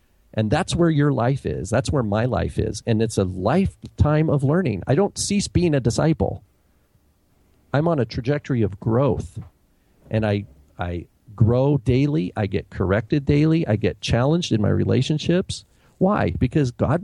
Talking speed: 165 wpm